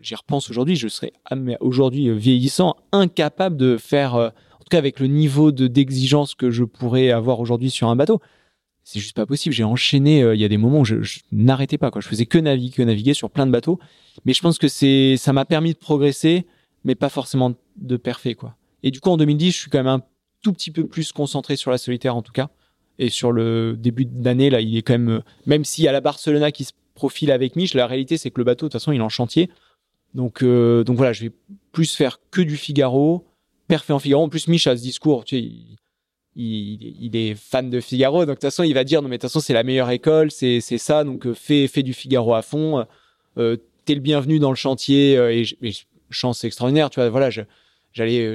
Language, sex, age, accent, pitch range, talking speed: French, male, 20-39, French, 120-150 Hz, 245 wpm